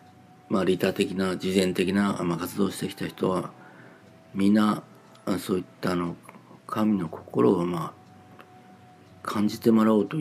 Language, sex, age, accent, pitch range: Japanese, male, 40-59, native, 90-110 Hz